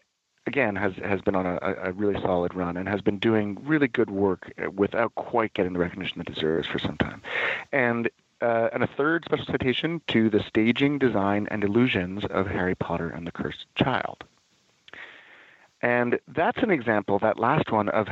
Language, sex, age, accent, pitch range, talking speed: English, male, 40-59, American, 95-120 Hz, 185 wpm